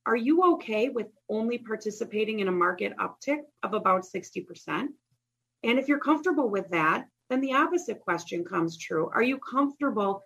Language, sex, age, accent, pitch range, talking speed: English, female, 30-49, American, 175-235 Hz, 165 wpm